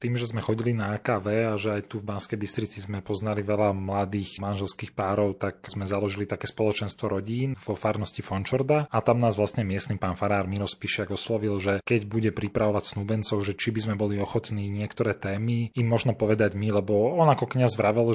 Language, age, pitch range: Slovak, 30-49, 100-110 Hz